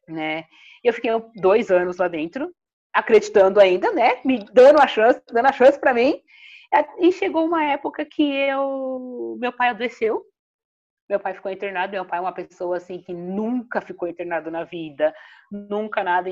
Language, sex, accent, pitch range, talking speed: Portuguese, female, Brazilian, 180-275 Hz, 170 wpm